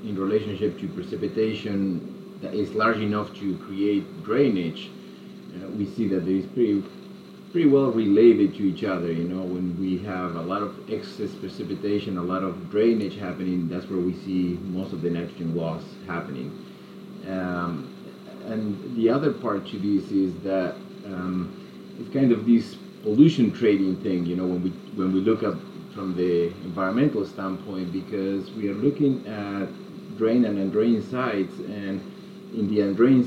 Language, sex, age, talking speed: English, male, 30-49, 160 wpm